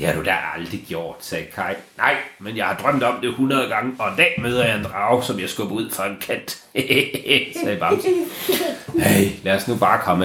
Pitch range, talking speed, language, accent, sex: 100-125 Hz, 230 wpm, Danish, native, male